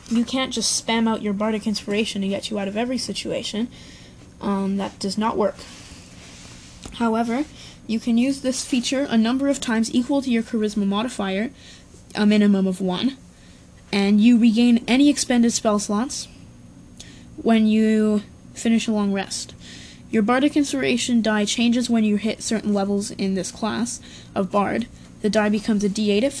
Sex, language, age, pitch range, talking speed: female, English, 20-39, 200-235 Hz, 165 wpm